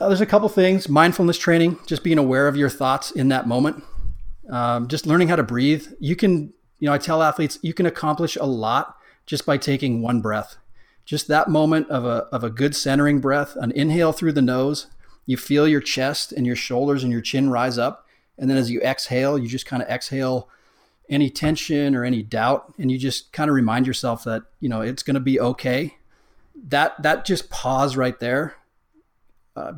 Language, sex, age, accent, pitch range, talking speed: English, male, 30-49, American, 125-150 Hz, 205 wpm